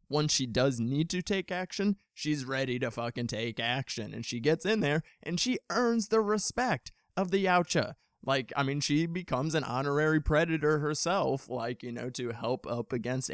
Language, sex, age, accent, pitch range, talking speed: English, male, 20-39, American, 115-150 Hz, 190 wpm